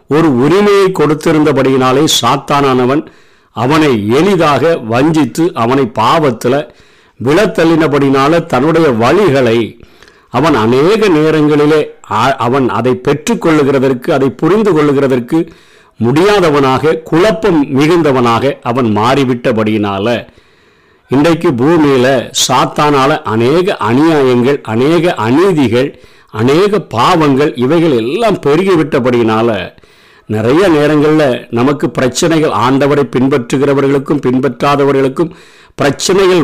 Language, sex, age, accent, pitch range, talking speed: Tamil, male, 50-69, native, 135-170 Hz, 75 wpm